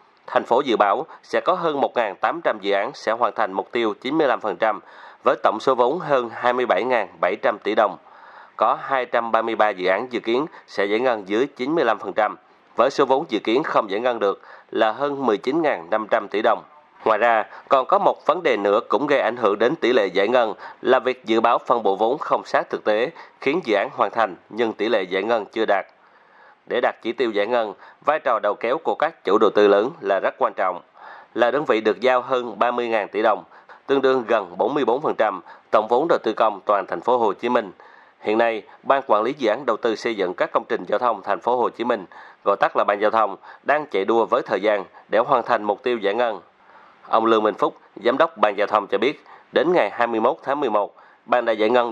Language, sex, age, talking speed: Vietnamese, male, 30-49, 225 wpm